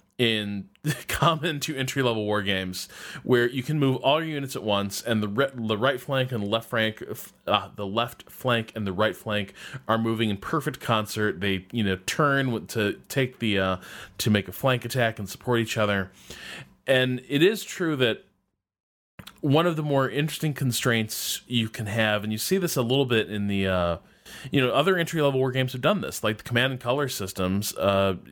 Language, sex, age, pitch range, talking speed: English, male, 20-39, 100-135 Hz, 205 wpm